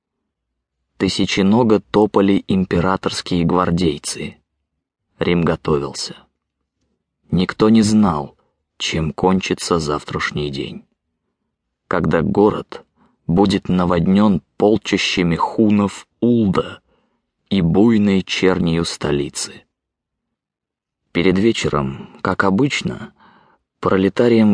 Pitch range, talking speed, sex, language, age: 85-100 Hz, 70 wpm, male, English, 20-39